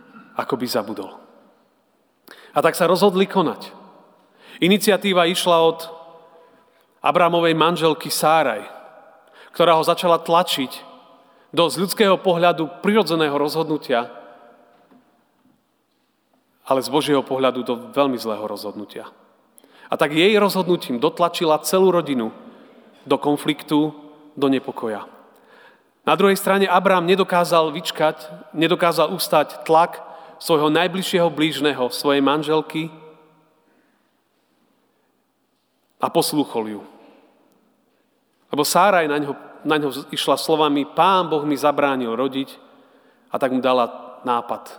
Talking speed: 100 wpm